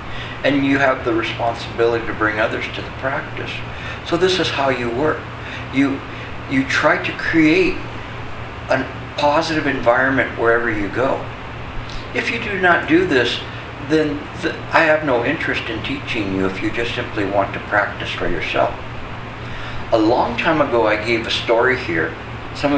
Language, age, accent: English, 60-79, American